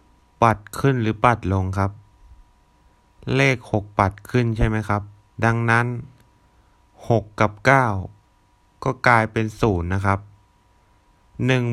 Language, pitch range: Thai, 95-115 Hz